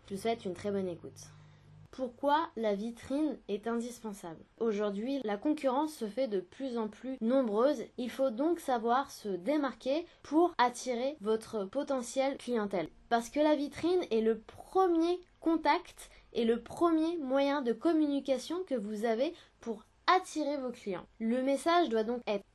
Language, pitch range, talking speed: French, 215-295 Hz, 160 wpm